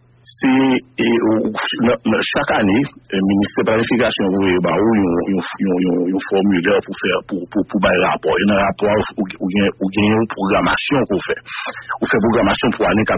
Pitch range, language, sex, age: 100-120 Hz, English, male, 60-79